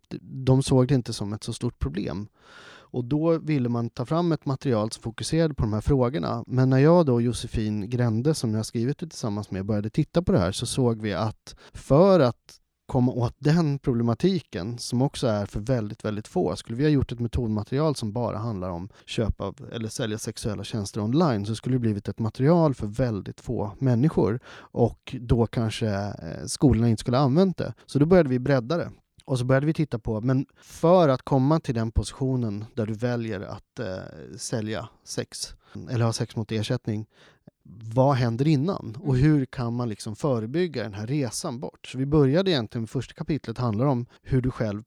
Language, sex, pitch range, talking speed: English, male, 110-135 Hz, 200 wpm